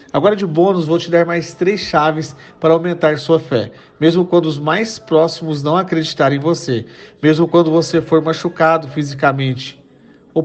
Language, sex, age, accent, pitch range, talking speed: Portuguese, male, 40-59, Brazilian, 140-170 Hz, 165 wpm